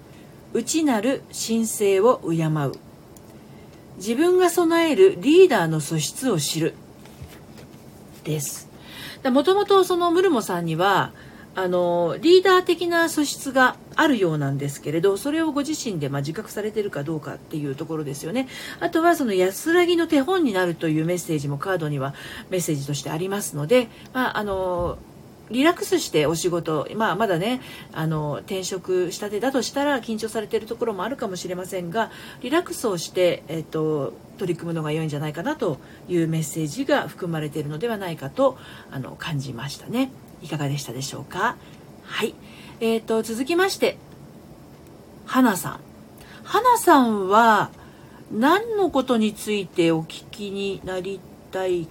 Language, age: Japanese, 40-59